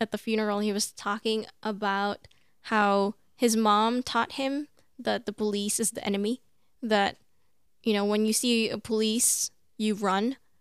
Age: 10-29